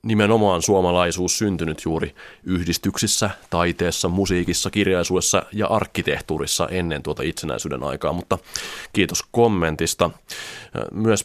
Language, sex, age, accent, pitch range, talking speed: Finnish, male, 30-49, native, 85-105 Hz, 95 wpm